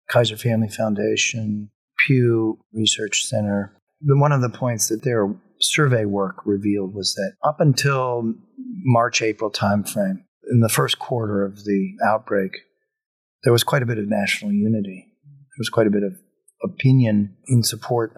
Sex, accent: male, American